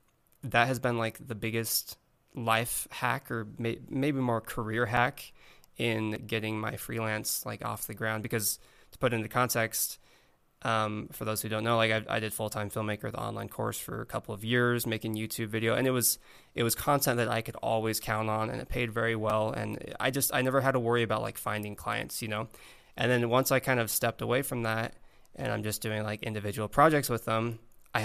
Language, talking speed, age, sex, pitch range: English, 220 wpm, 20-39, male, 110-120 Hz